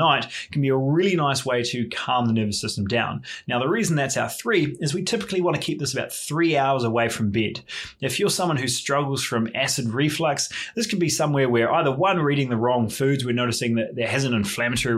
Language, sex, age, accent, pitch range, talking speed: English, male, 20-39, Australian, 115-140 Hz, 230 wpm